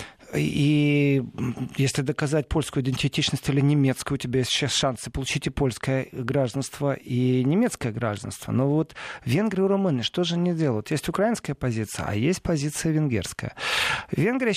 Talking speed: 150 wpm